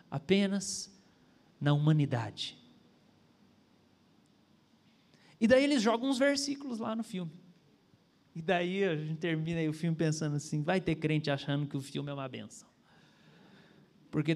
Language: Portuguese